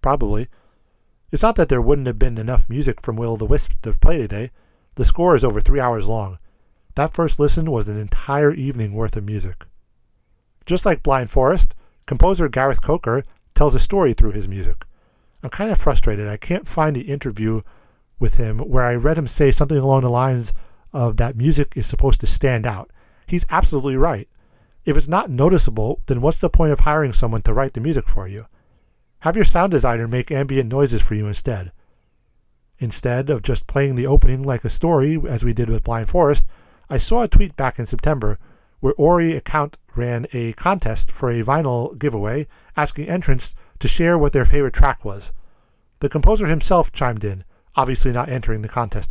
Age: 40-59